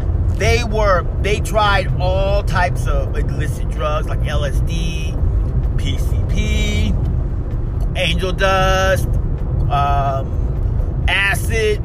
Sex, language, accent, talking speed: male, English, American, 80 wpm